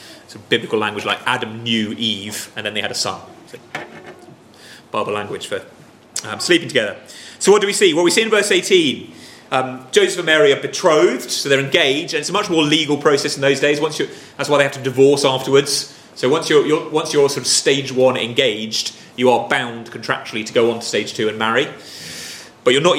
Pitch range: 120-160 Hz